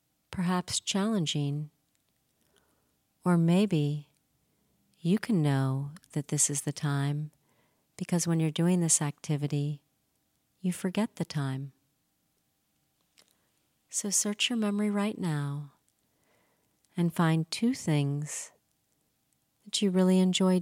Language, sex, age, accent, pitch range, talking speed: English, female, 40-59, American, 115-180 Hz, 105 wpm